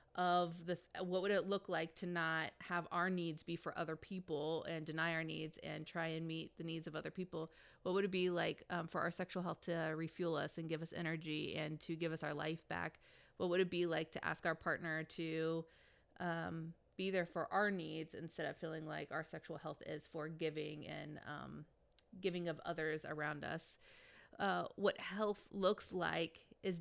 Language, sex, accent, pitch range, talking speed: English, female, American, 160-185 Hz, 205 wpm